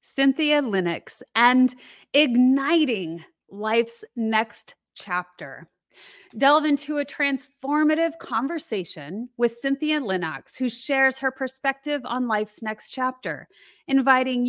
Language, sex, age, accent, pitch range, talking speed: English, female, 30-49, American, 220-280 Hz, 100 wpm